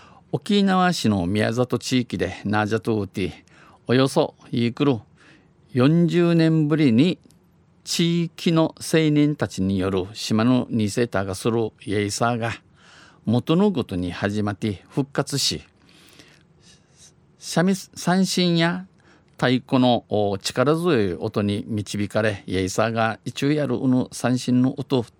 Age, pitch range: 50-69, 105-140 Hz